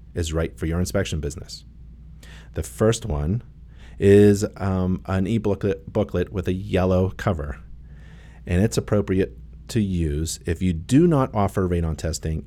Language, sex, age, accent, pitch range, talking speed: English, male, 40-59, American, 75-95 Hz, 140 wpm